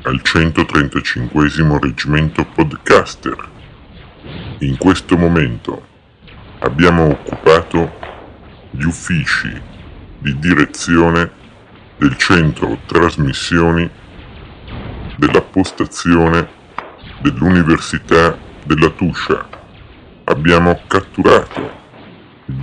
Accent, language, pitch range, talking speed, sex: native, Italian, 75-85 Hz, 65 wpm, female